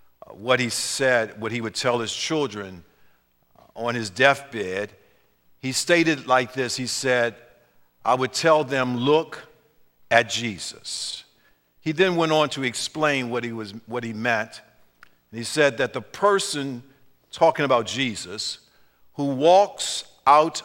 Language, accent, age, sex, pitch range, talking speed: English, American, 50-69, male, 115-160 Hz, 140 wpm